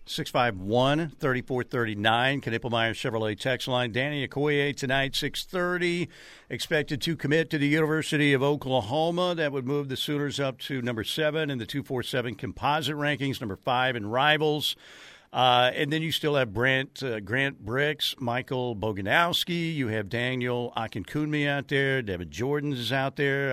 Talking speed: 175 wpm